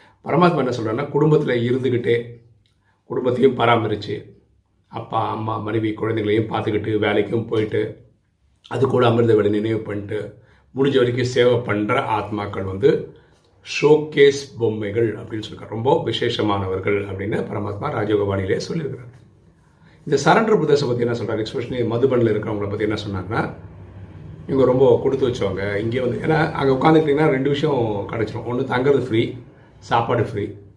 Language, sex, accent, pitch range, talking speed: Tamil, male, native, 105-135 Hz, 125 wpm